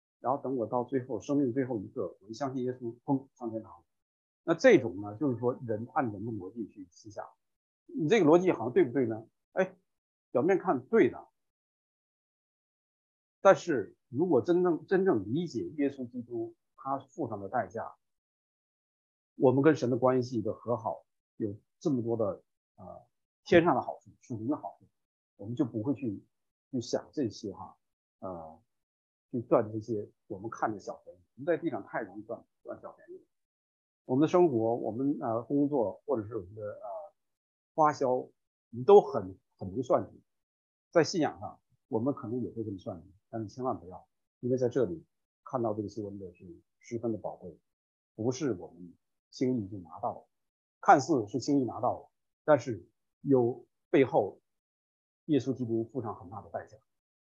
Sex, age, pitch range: male, 50-69, 110-140 Hz